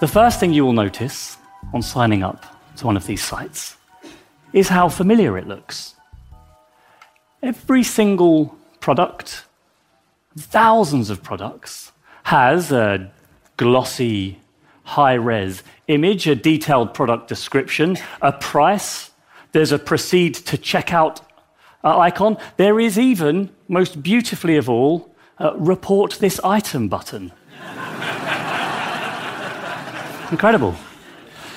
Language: English